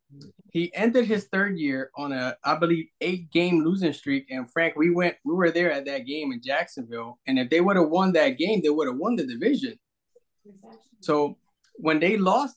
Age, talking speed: 20-39, 205 wpm